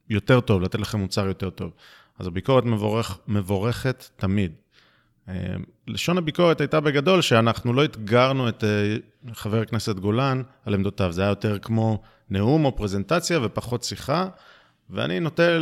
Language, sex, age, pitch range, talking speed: Hebrew, male, 30-49, 105-130 Hz, 145 wpm